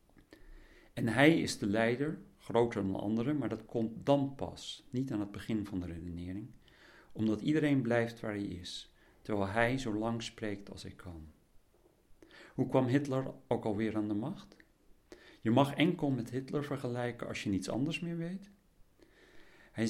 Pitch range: 100-125 Hz